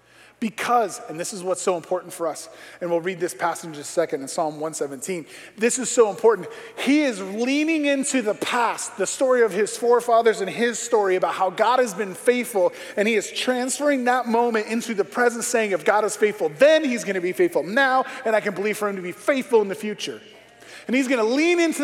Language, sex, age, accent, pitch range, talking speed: English, male, 30-49, American, 185-255 Hz, 230 wpm